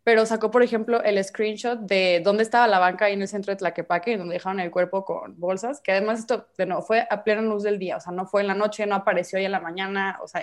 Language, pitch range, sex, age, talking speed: Spanish, 195-245 Hz, female, 20-39, 275 wpm